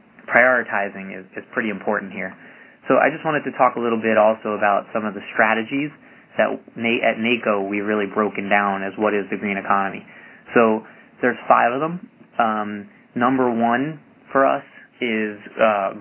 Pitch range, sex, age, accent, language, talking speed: 105-120 Hz, male, 20-39, American, English, 170 wpm